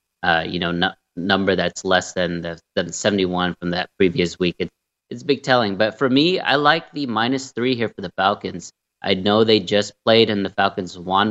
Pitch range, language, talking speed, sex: 95-110 Hz, English, 210 wpm, male